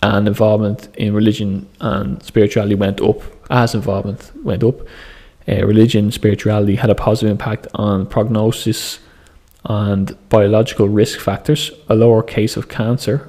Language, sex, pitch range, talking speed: English, male, 100-115 Hz, 135 wpm